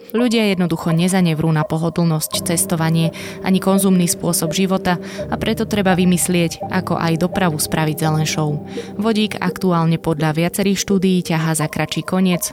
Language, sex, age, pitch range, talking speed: Slovak, female, 20-39, 160-195 Hz, 135 wpm